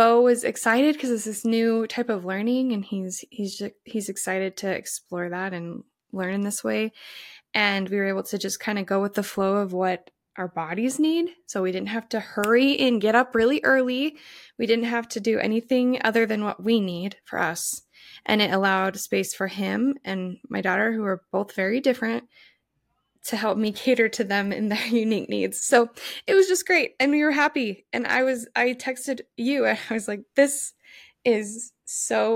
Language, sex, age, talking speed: English, female, 20-39, 205 wpm